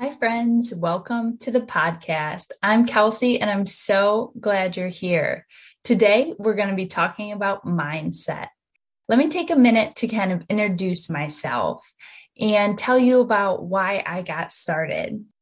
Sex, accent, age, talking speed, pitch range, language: female, American, 10-29, 155 wpm, 185-235 Hz, English